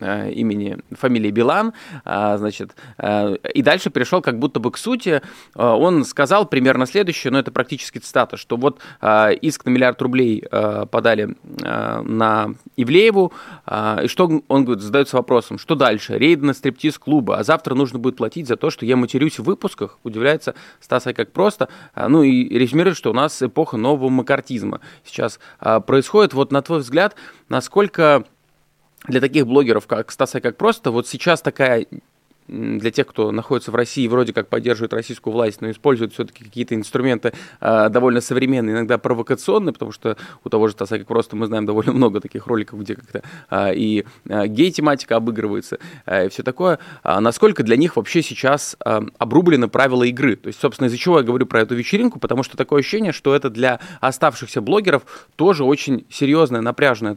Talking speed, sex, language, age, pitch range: 170 wpm, male, Russian, 20-39, 115-145 Hz